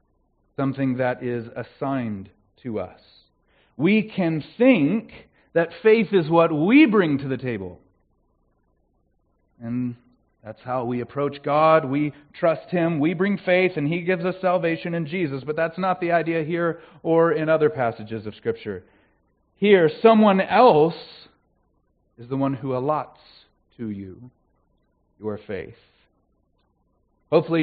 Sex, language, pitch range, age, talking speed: male, English, 115-175 Hz, 40-59, 135 wpm